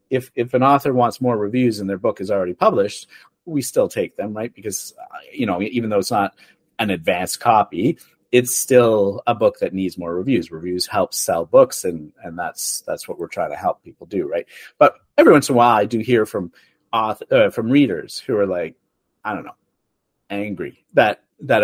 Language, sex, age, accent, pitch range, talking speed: English, male, 40-59, American, 105-145 Hz, 210 wpm